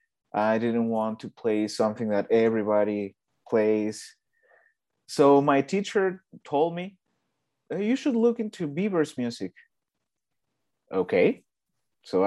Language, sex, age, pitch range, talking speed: English, male, 30-49, 115-155 Hz, 110 wpm